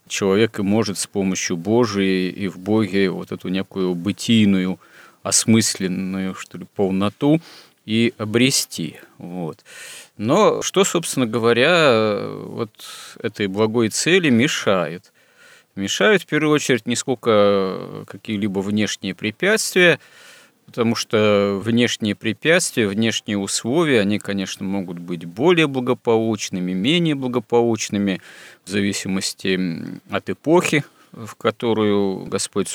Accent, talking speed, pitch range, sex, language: native, 110 wpm, 95-115 Hz, male, Russian